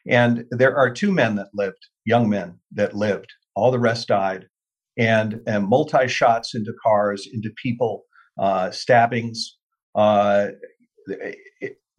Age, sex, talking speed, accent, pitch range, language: 50-69, male, 135 wpm, American, 105-130 Hz, English